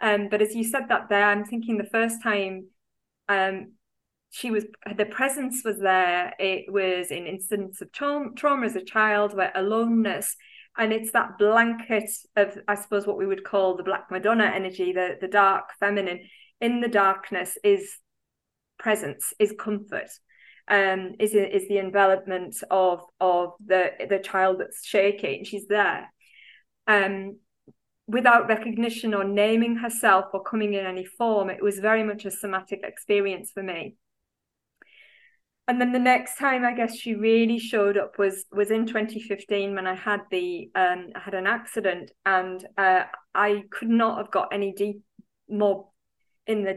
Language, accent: English, British